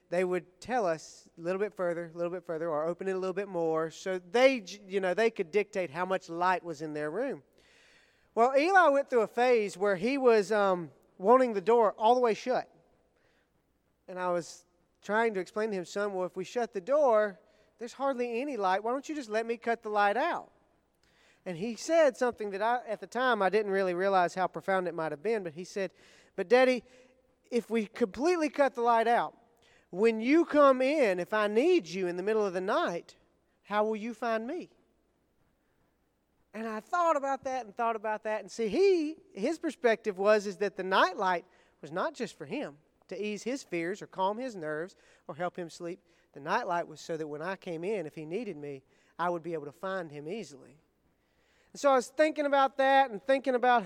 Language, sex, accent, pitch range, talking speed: English, male, American, 180-240 Hz, 220 wpm